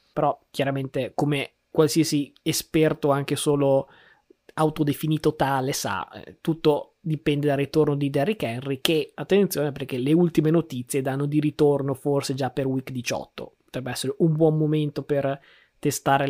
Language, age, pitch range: Italian, 20-39, 135-155 Hz